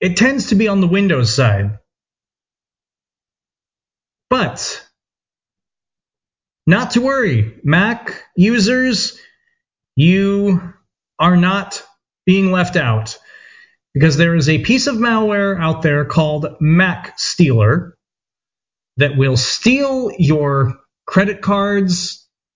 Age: 30-49